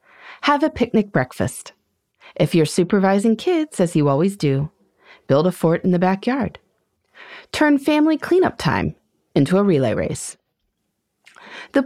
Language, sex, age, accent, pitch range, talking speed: English, female, 30-49, American, 160-265 Hz, 135 wpm